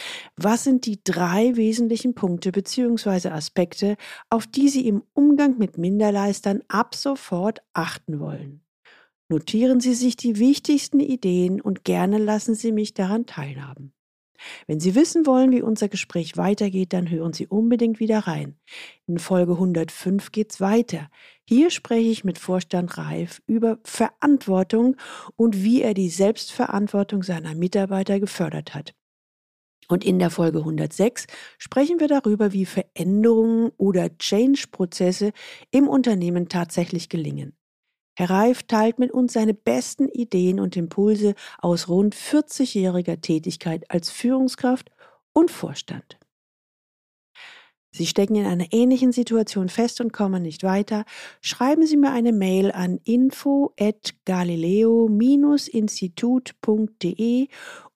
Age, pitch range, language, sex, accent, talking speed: 40-59, 180-240 Hz, German, female, German, 125 wpm